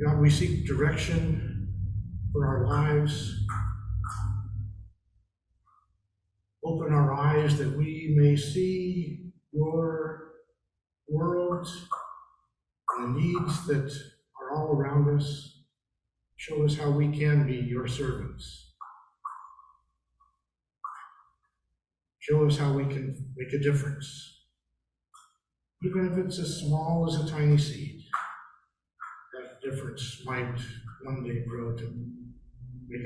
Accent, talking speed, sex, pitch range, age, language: American, 100 wpm, male, 115-150 Hz, 50-69, English